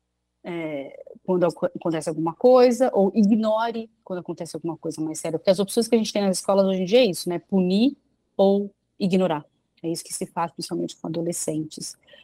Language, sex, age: Portuguese, female, 30-49